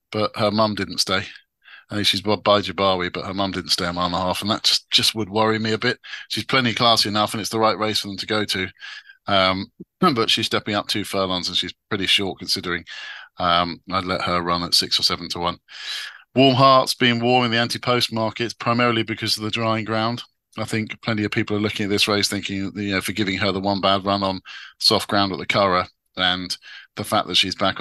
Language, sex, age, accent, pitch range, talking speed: English, male, 40-59, British, 95-110 Hz, 245 wpm